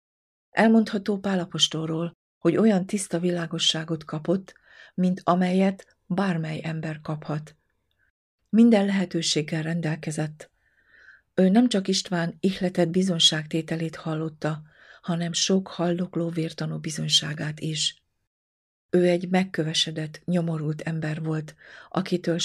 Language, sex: Hungarian, female